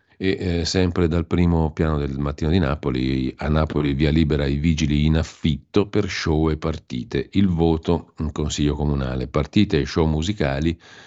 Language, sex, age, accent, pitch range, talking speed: Italian, male, 50-69, native, 70-90 Hz, 170 wpm